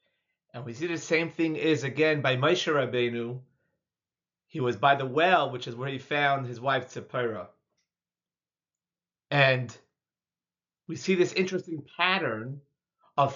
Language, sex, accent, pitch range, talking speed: English, male, American, 130-170 Hz, 140 wpm